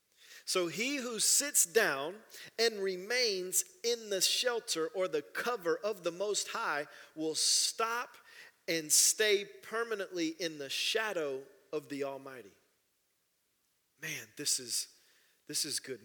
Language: English